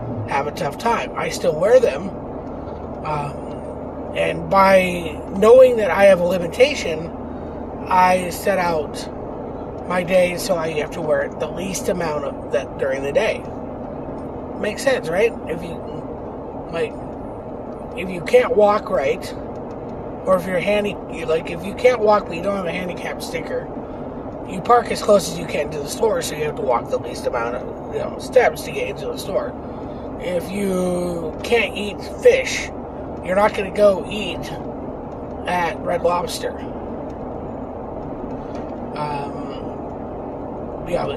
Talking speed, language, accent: 155 wpm, English, American